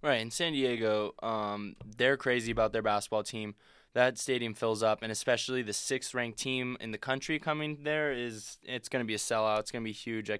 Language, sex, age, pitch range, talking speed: English, male, 20-39, 110-125 Hz, 215 wpm